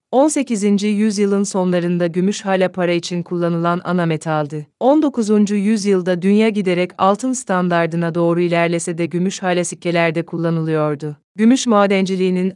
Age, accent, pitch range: 30-49, Turkish, 170-205 Hz